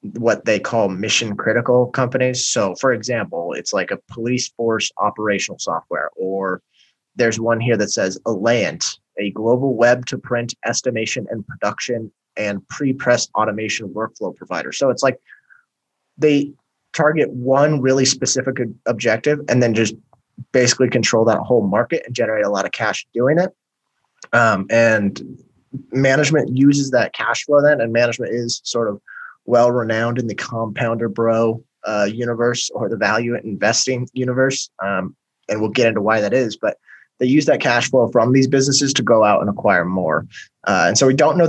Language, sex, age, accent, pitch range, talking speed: English, male, 20-39, American, 110-130 Hz, 170 wpm